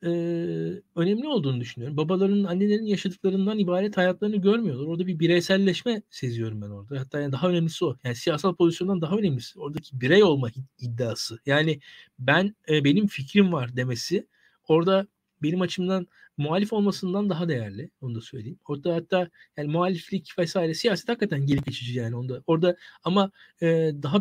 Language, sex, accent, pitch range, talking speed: Turkish, male, native, 145-195 Hz, 145 wpm